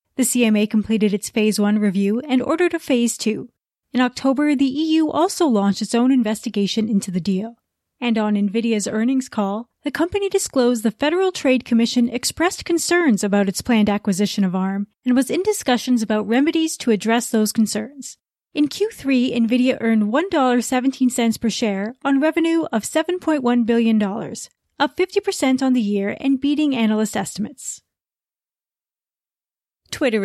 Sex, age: female, 30-49